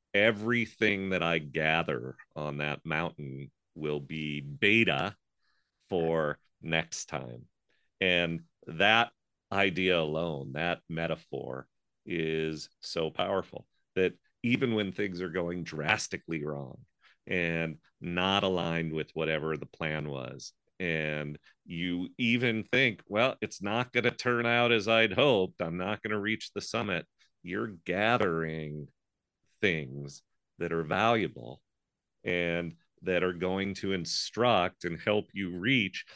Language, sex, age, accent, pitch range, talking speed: English, male, 40-59, American, 80-105 Hz, 125 wpm